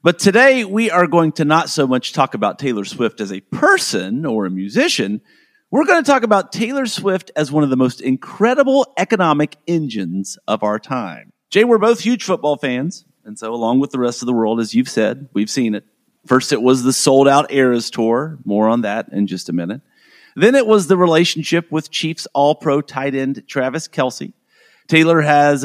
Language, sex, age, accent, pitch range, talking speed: English, male, 40-59, American, 130-215 Hz, 200 wpm